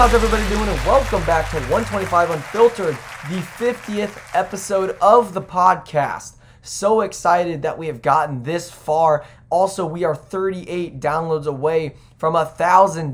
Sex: male